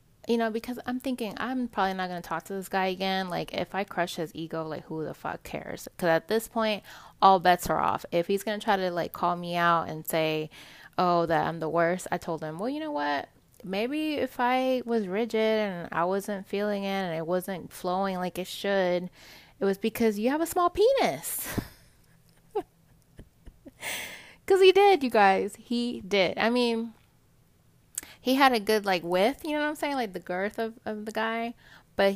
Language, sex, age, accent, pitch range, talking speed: English, female, 20-39, American, 175-230 Hz, 205 wpm